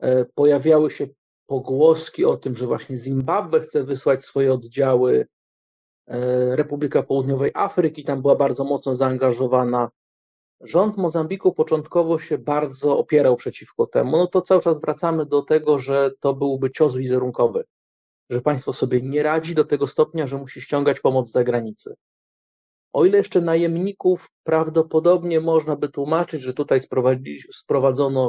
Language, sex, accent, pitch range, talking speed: Polish, male, native, 130-165 Hz, 140 wpm